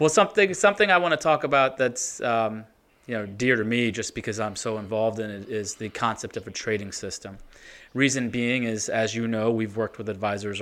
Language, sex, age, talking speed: English, male, 20-39, 220 wpm